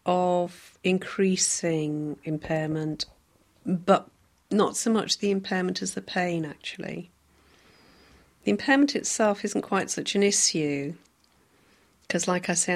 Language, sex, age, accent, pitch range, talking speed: English, female, 40-59, British, 160-195 Hz, 120 wpm